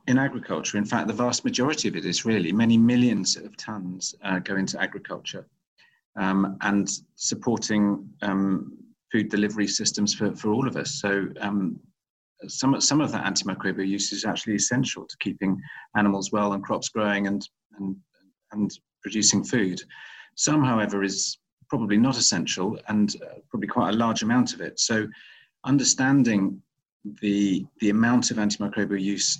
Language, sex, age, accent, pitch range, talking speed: English, male, 40-59, British, 100-115 Hz, 155 wpm